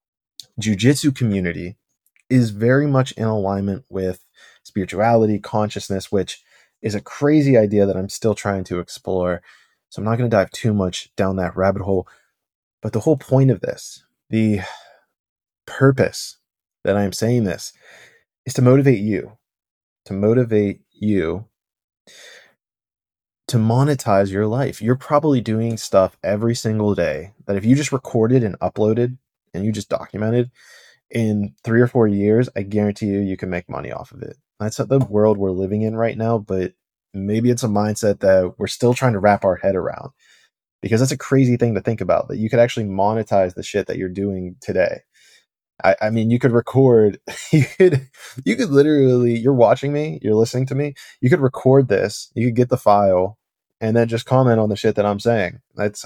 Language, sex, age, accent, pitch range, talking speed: English, male, 20-39, American, 100-125 Hz, 180 wpm